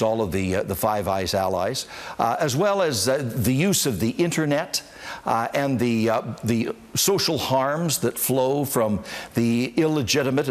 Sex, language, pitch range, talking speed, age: male, English, 110-130 Hz, 170 wpm, 60-79